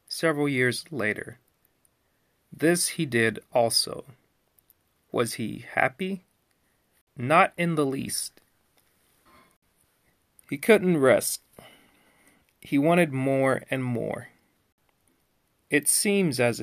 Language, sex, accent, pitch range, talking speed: English, male, American, 115-145 Hz, 90 wpm